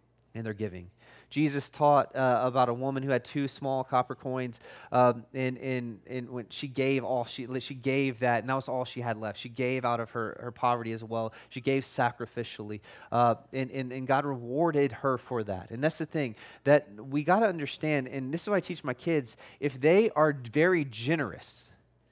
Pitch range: 120-150 Hz